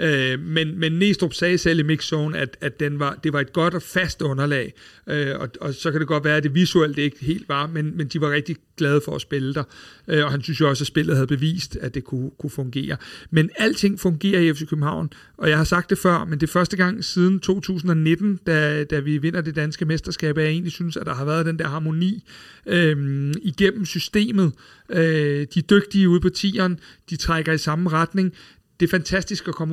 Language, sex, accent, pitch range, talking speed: Danish, male, native, 155-185 Hz, 230 wpm